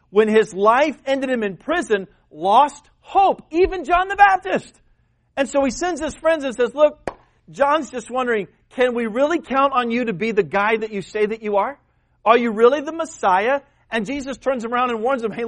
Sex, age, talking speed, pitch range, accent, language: male, 40-59, 210 wpm, 195-270 Hz, American, English